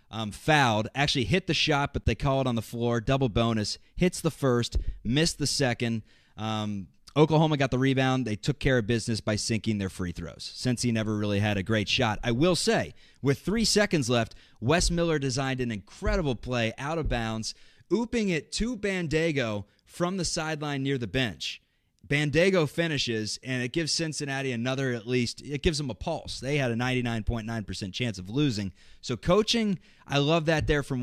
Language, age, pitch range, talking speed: English, 30-49, 115-155 Hz, 190 wpm